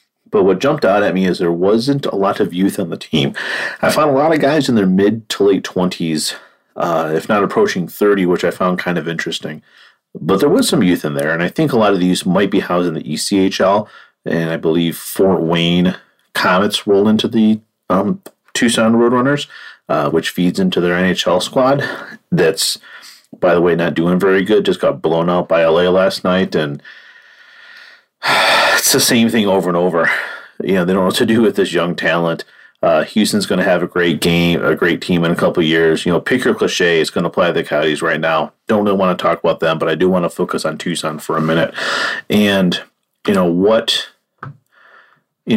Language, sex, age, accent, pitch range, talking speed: English, male, 40-59, American, 85-100 Hz, 220 wpm